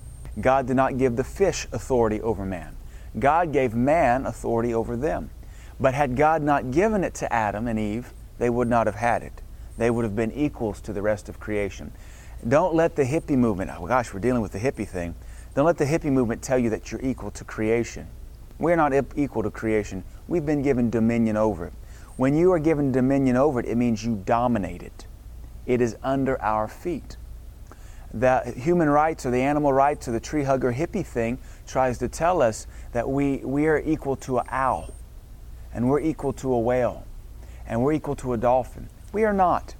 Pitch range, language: 110-135 Hz, English